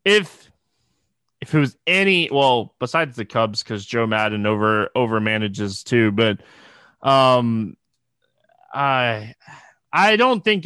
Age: 20-39